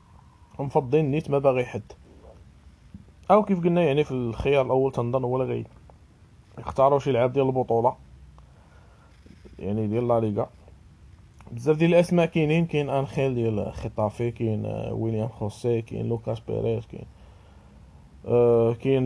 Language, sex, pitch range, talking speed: Arabic, male, 115-135 Hz, 125 wpm